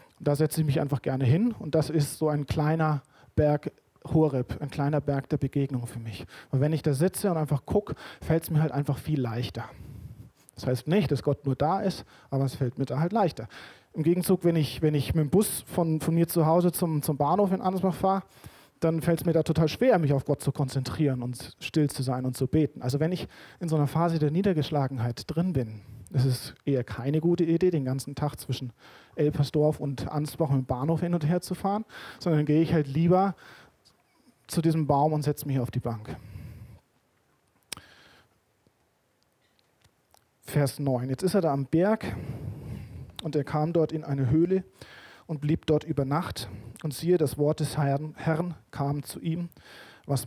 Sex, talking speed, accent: male, 200 wpm, German